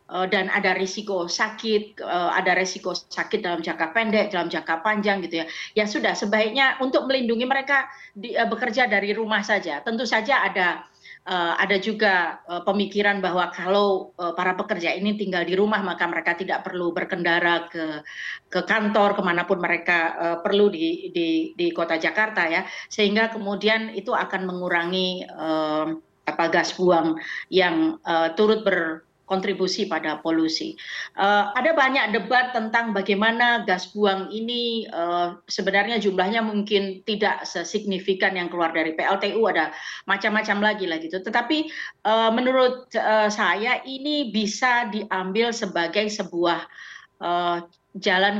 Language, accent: Indonesian, native